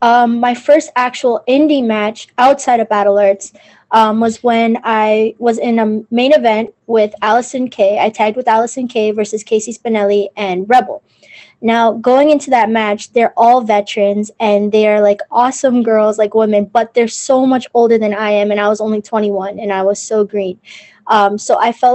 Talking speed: 190 wpm